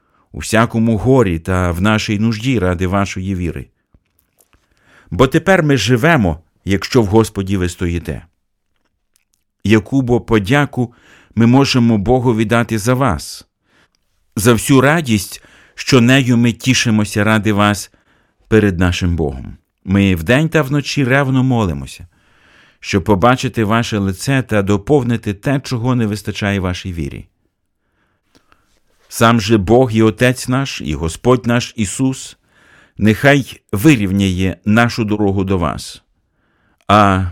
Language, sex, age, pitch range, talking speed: Ukrainian, male, 50-69, 95-125 Hz, 120 wpm